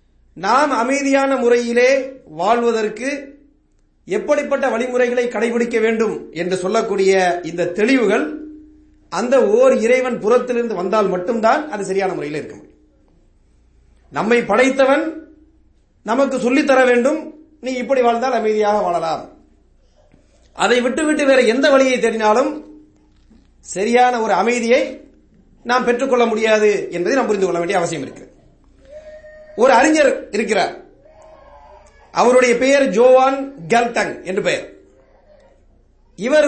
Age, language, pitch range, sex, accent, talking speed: 30-49, English, 225-275 Hz, male, Indian, 100 wpm